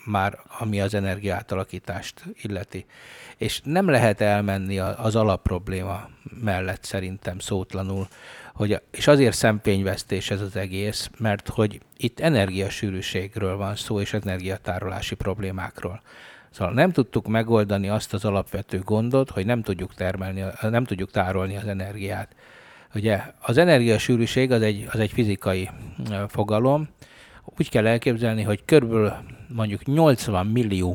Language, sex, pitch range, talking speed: Hungarian, male, 95-115 Hz, 125 wpm